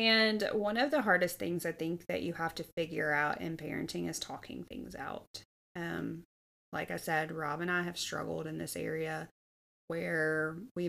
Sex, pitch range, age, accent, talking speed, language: female, 150-175 Hz, 20-39, American, 185 wpm, English